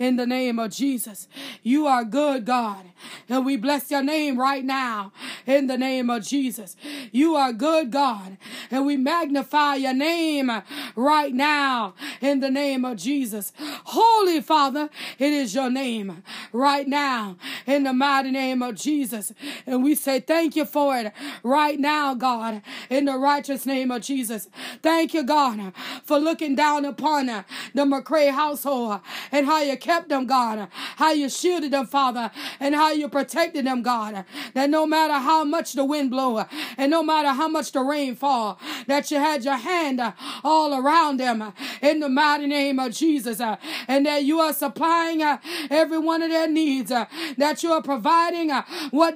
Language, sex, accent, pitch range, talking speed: English, female, American, 260-315 Hz, 170 wpm